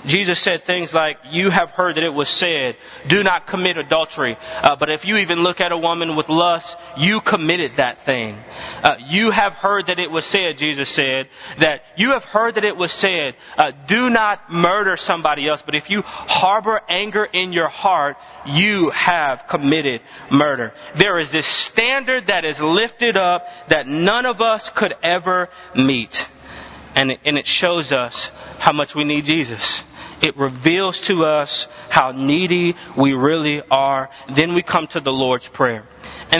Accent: American